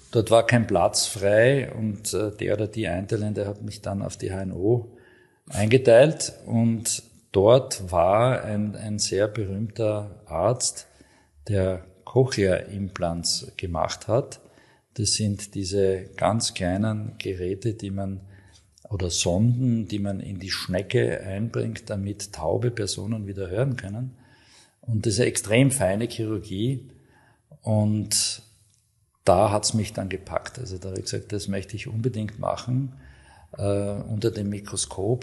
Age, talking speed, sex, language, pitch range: 50-69, 135 wpm, male, German, 100-120 Hz